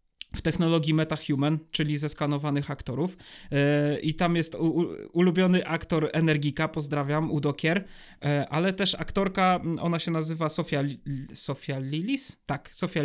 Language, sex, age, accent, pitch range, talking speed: Polish, male, 20-39, native, 145-175 Hz, 125 wpm